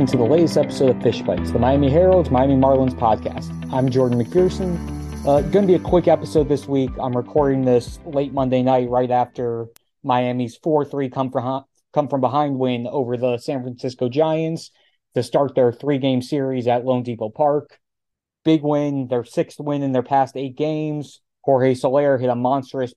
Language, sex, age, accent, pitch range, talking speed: English, male, 30-49, American, 125-150 Hz, 180 wpm